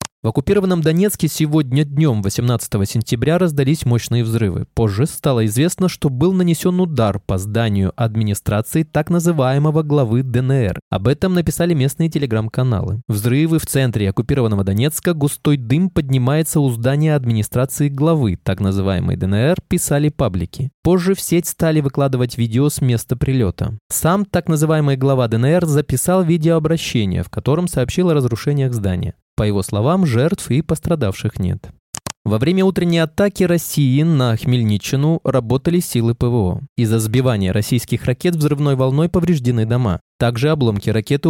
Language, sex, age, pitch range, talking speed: Russian, male, 20-39, 115-155 Hz, 140 wpm